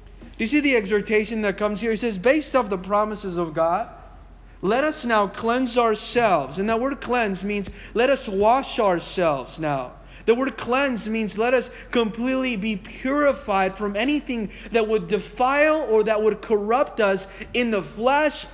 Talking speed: 170 wpm